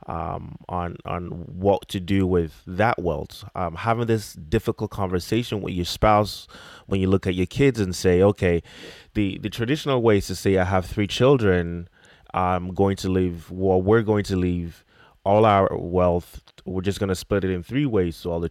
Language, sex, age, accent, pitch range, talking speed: English, male, 30-49, American, 90-110 Hz, 200 wpm